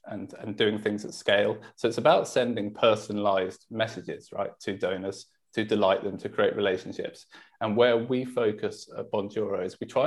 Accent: British